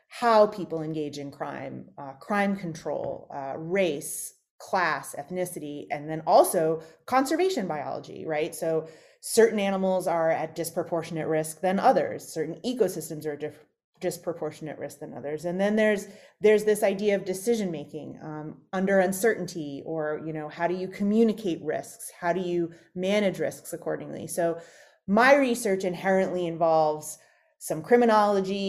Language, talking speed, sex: English, 145 wpm, female